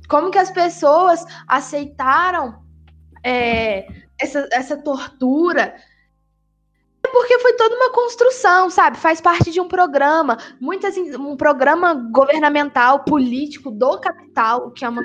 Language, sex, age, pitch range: Portuguese, female, 10-29, 260-345 Hz